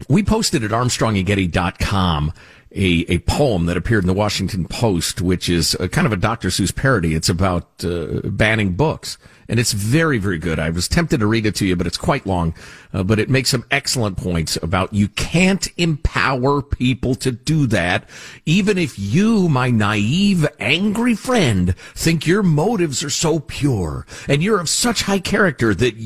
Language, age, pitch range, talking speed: English, 50-69, 95-150 Hz, 185 wpm